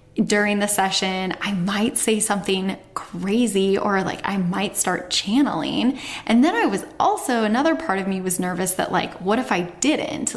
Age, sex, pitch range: 10-29, female, 190-240 Hz